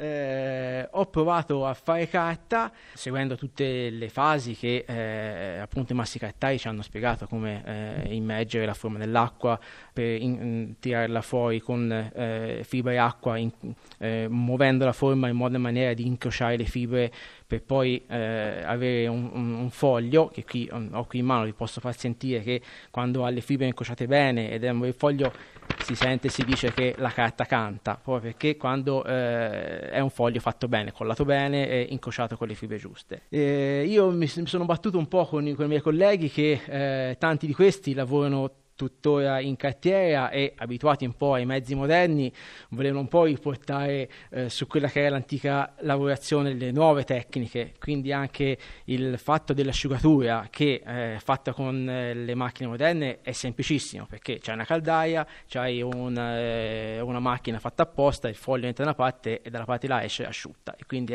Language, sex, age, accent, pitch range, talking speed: Italian, male, 20-39, native, 120-140 Hz, 175 wpm